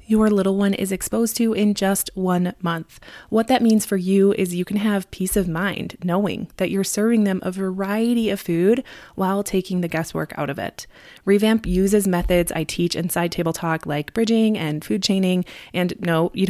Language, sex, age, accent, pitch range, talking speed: English, female, 20-39, American, 170-215 Hz, 195 wpm